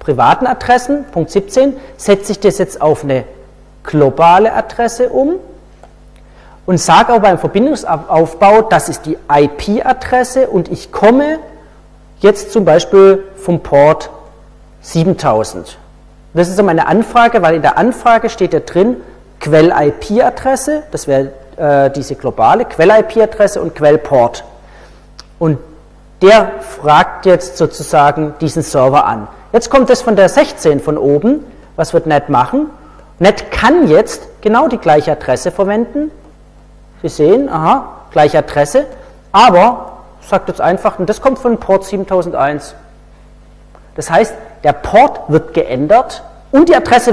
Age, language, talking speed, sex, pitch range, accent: 40-59, German, 130 wpm, male, 145-230 Hz, German